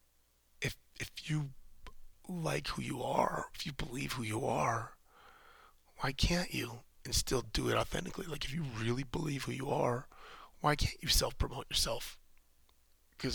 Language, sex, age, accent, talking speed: English, male, 30-49, American, 155 wpm